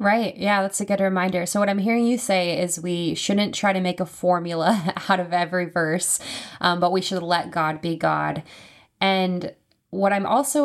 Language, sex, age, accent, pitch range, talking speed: English, female, 20-39, American, 165-195 Hz, 205 wpm